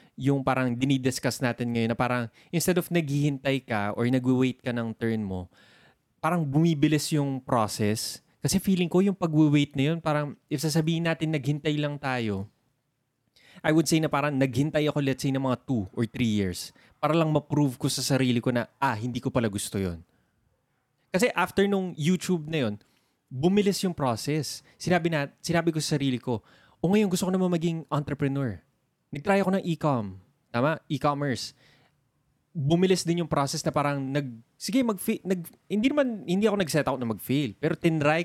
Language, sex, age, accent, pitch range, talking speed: Filipino, male, 20-39, native, 125-165 Hz, 180 wpm